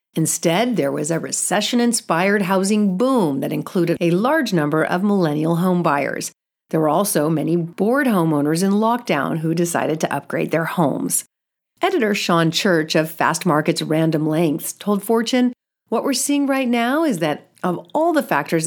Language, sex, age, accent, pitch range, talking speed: English, female, 50-69, American, 160-220 Hz, 165 wpm